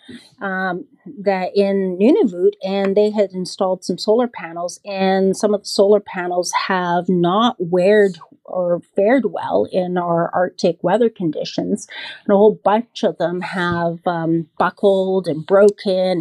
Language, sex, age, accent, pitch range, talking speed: English, female, 40-59, American, 185-220 Hz, 145 wpm